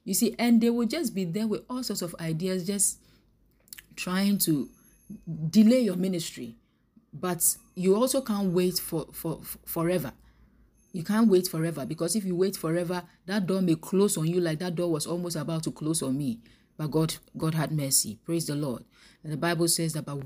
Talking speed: 195 wpm